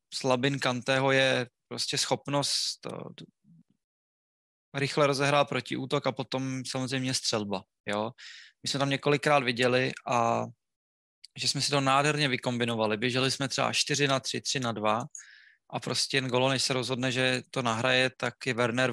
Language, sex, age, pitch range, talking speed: Czech, male, 20-39, 120-135 Hz, 155 wpm